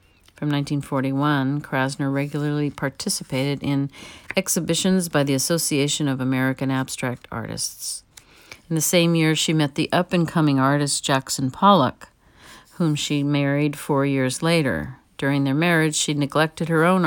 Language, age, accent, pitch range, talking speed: English, 50-69, American, 135-165 Hz, 135 wpm